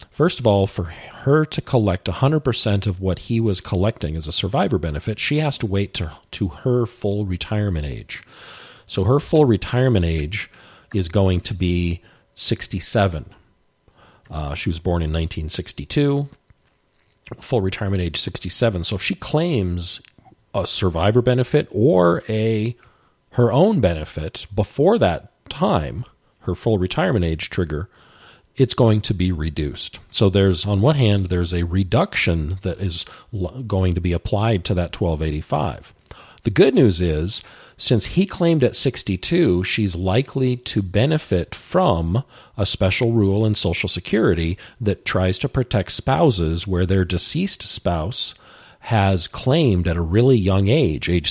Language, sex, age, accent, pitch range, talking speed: English, male, 40-59, American, 90-115 Hz, 145 wpm